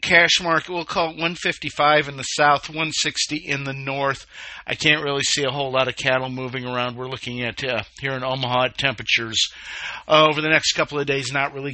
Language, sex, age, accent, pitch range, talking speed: English, male, 50-69, American, 130-160 Hz, 215 wpm